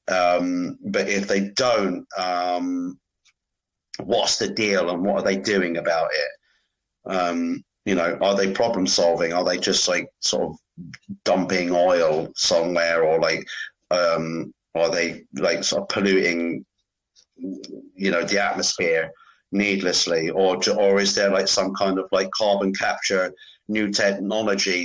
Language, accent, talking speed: English, British, 140 wpm